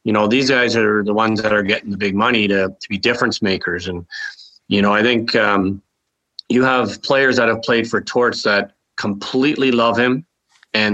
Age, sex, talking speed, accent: 30-49, male, 205 wpm, American